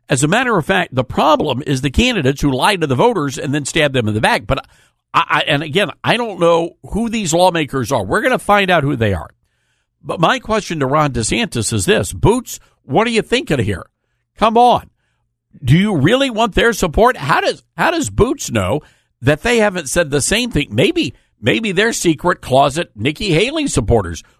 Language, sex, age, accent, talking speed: English, male, 60-79, American, 210 wpm